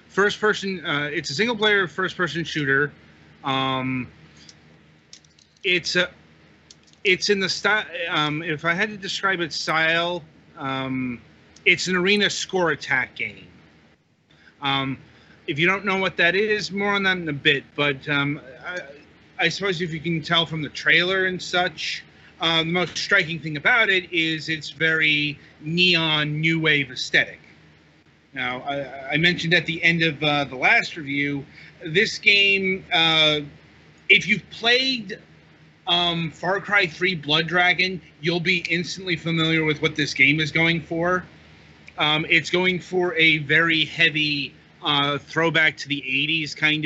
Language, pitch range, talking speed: English, 140-180 Hz, 150 wpm